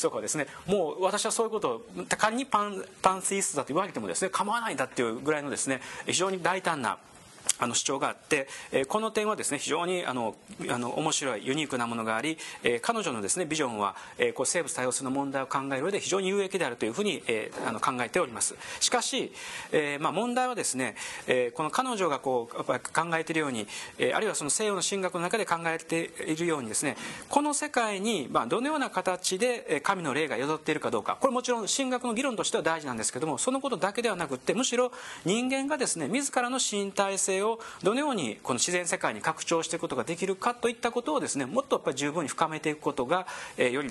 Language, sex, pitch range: Japanese, male, 160-245 Hz